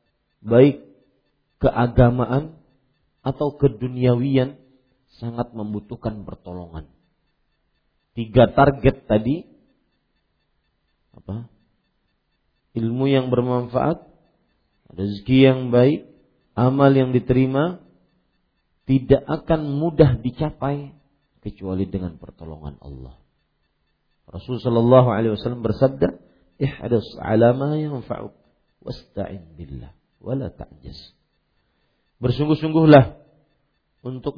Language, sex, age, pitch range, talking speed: English, male, 50-69, 100-135 Hz, 70 wpm